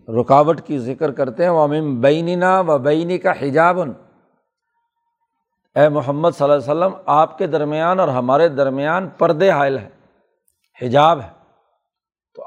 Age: 60-79